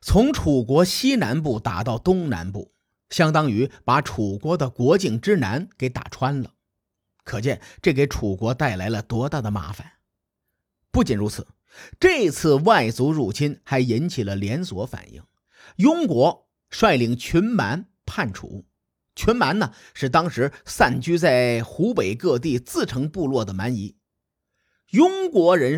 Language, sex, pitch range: Chinese, male, 110-165 Hz